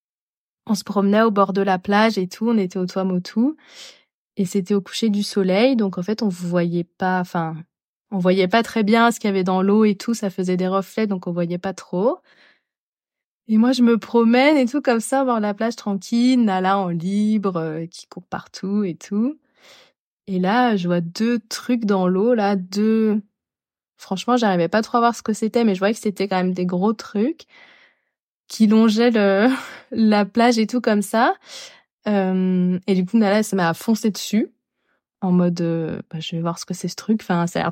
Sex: female